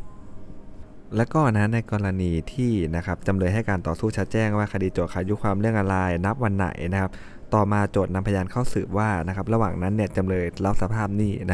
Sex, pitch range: male, 90-105 Hz